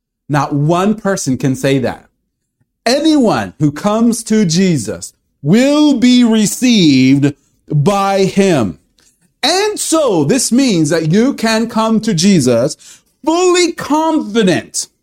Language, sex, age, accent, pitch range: Japanese, male, 50-69, American, 145-235 Hz